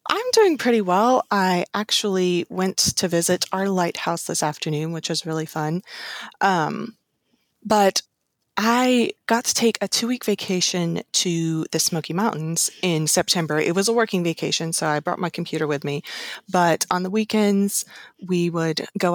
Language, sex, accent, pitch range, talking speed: English, female, American, 155-190 Hz, 160 wpm